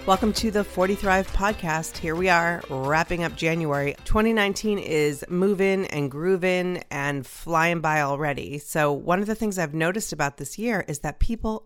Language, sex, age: English, female, 30-49